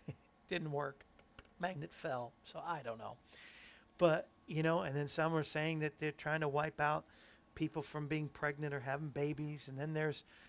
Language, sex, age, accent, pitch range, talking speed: English, male, 40-59, American, 145-200 Hz, 185 wpm